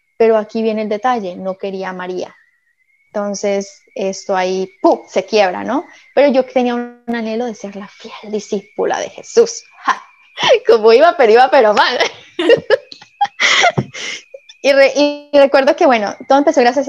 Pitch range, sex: 210-290 Hz, female